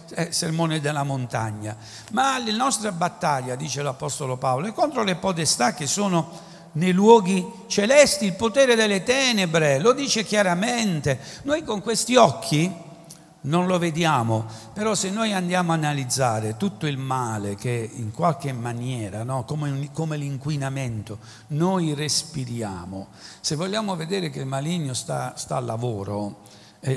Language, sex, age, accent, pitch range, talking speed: Italian, male, 60-79, native, 120-175 Hz, 140 wpm